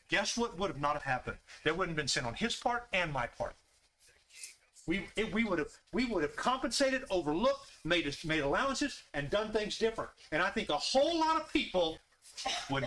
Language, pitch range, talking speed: English, 145-225 Hz, 205 wpm